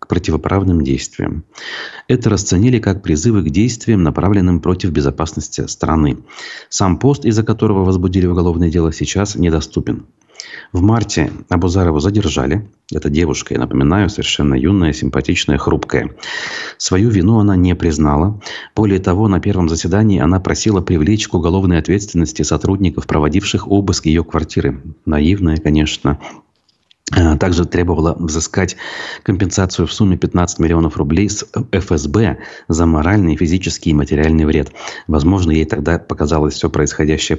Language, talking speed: Russian, 130 wpm